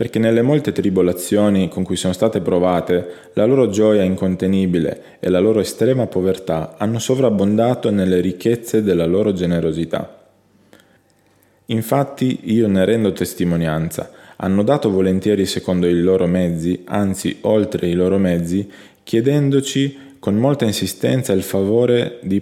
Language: Italian